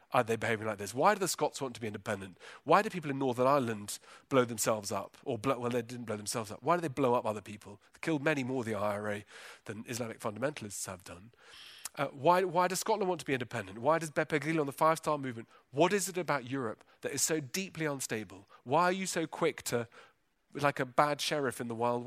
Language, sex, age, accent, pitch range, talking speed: English, male, 40-59, British, 115-155 Hz, 245 wpm